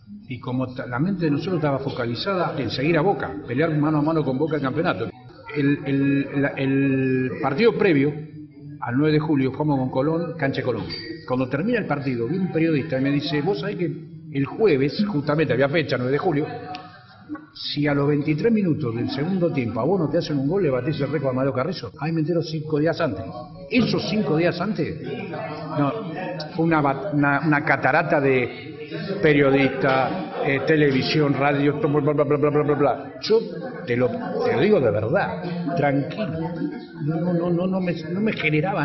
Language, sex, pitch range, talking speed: Spanish, male, 140-170 Hz, 190 wpm